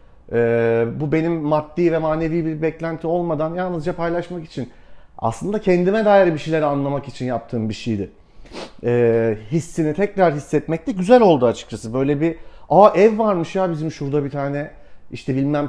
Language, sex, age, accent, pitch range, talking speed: Turkish, male, 40-59, native, 125-170 Hz, 160 wpm